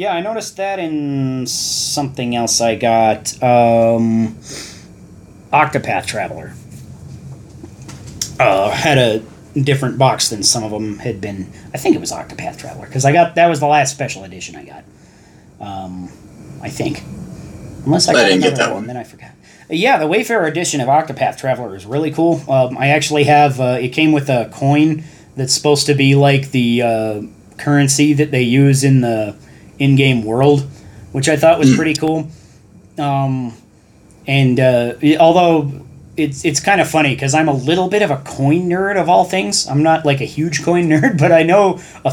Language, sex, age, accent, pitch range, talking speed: English, male, 30-49, American, 125-155 Hz, 175 wpm